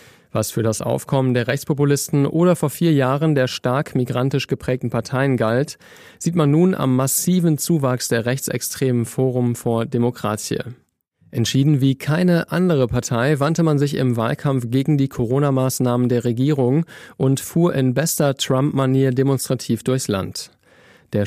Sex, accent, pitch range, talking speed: male, German, 125-150 Hz, 145 wpm